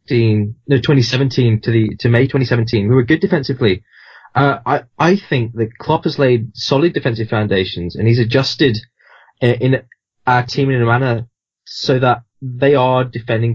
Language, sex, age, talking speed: English, male, 20-39, 165 wpm